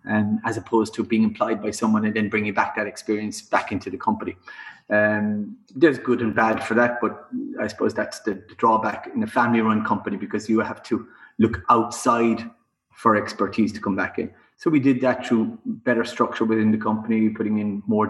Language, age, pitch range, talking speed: English, 30-49, 105-115 Hz, 200 wpm